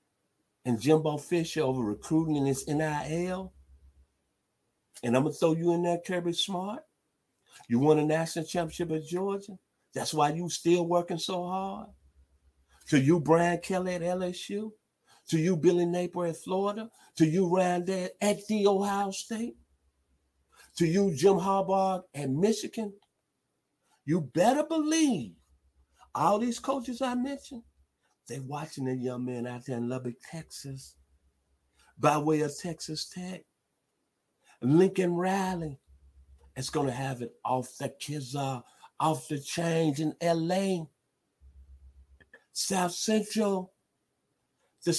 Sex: male